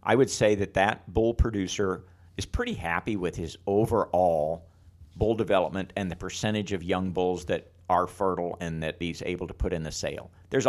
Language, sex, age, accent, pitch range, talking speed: English, male, 50-69, American, 90-105 Hz, 190 wpm